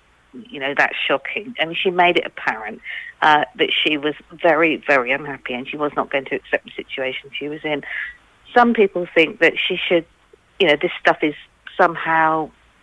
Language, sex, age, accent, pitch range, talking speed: English, female, 50-69, British, 145-170 Hz, 195 wpm